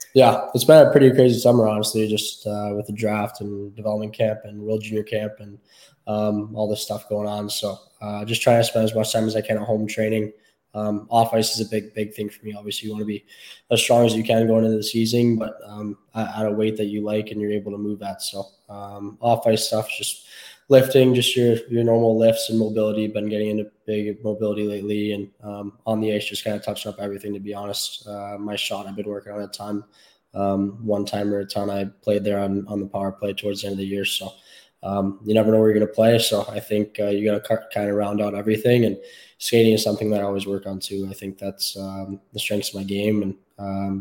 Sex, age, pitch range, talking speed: male, 10-29, 100-110 Hz, 250 wpm